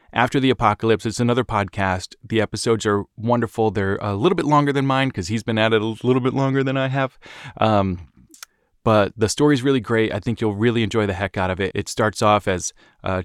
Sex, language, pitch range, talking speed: male, English, 105-135 Hz, 230 wpm